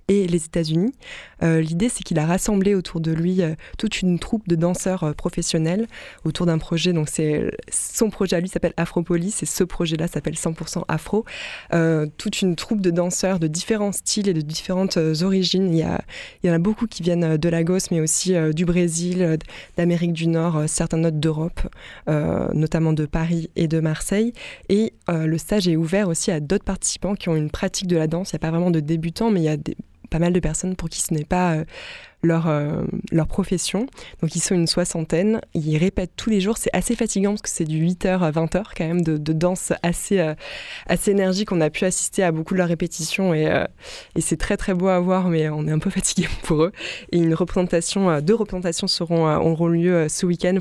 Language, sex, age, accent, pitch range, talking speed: French, female, 20-39, French, 165-190 Hz, 225 wpm